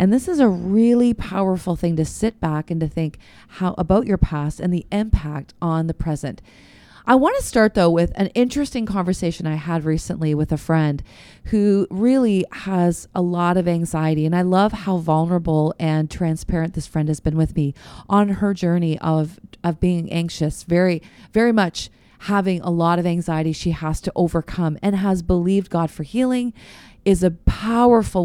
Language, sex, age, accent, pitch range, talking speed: English, female, 30-49, American, 165-205 Hz, 180 wpm